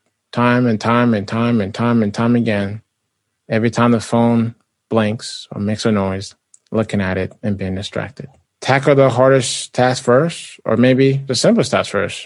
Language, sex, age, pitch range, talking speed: English, male, 20-39, 105-125 Hz, 175 wpm